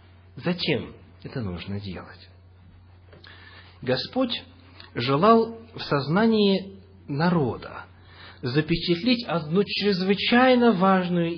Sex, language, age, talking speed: male, English, 40-59, 70 wpm